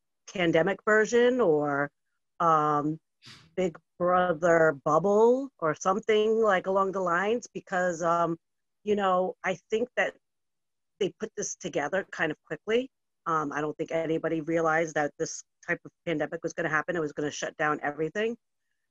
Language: English